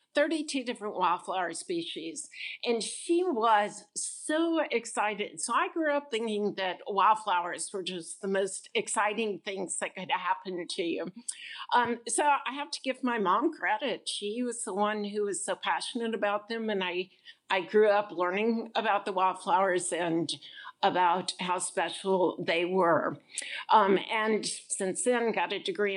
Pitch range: 185-240 Hz